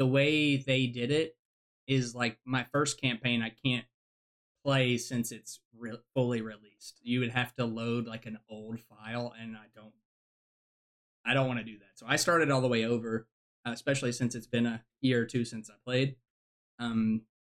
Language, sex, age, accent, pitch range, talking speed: English, male, 20-39, American, 115-130 Hz, 190 wpm